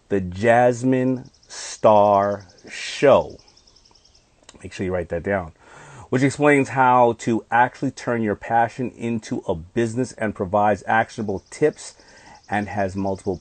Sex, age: male, 40-59